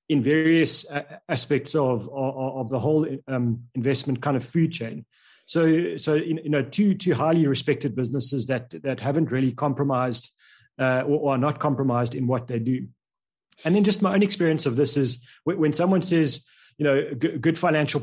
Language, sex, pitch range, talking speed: English, male, 130-155 Hz, 190 wpm